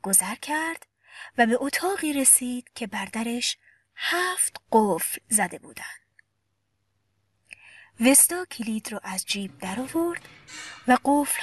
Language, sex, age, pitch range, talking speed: Persian, female, 30-49, 195-300 Hz, 105 wpm